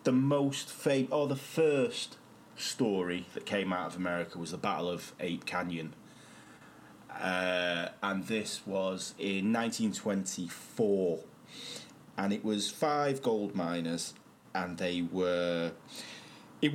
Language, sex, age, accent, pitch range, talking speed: English, male, 30-49, British, 90-110 Hz, 135 wpm